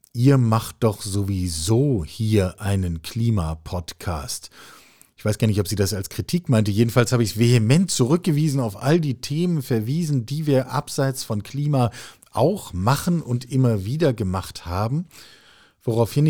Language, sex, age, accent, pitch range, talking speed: German, male, 40-59, German, 100-140 Hz, 150 wpm